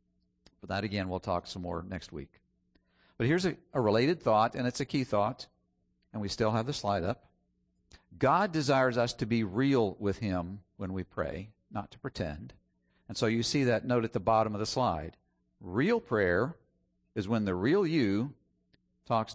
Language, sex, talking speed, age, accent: English, male, 185 wpm, 50-69, American